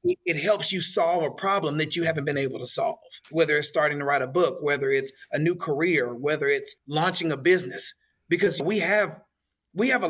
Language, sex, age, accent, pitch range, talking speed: English, male, 30-49, American, 155-225 Hz, 215 wpm